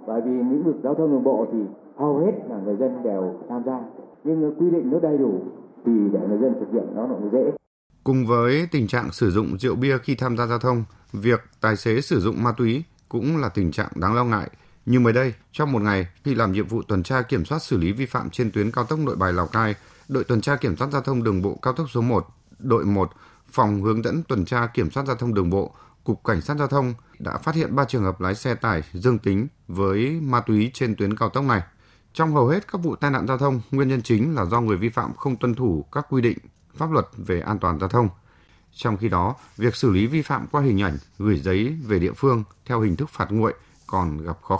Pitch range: 100-135 Hz